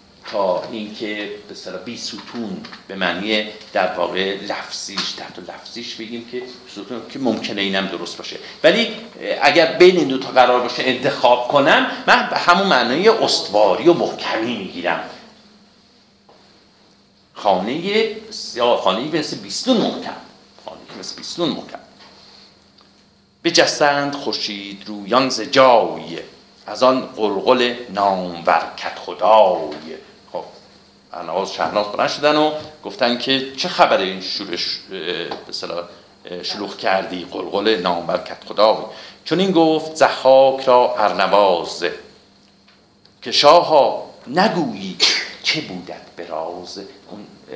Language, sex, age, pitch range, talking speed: Persian, male, 50-69, 100-145 Hz, 110 wpm